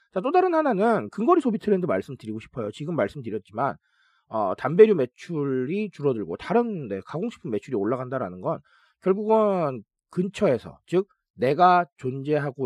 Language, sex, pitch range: Korean, male, 135-215 Hz